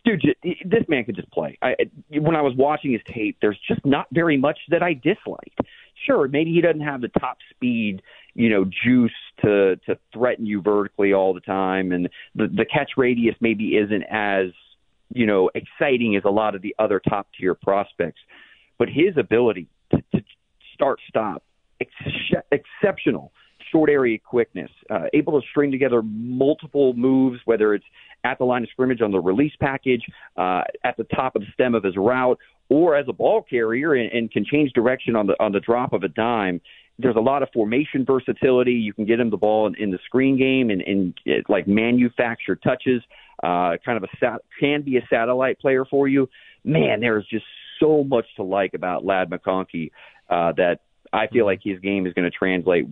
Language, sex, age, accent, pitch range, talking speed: English, male, 40-59, American, 100-135 Hz, 195 wpm